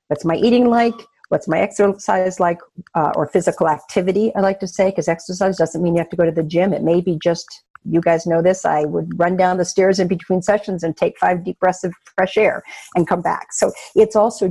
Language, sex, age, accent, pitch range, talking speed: English, female, 50-69, American, 170-205 Hz, 240 wpm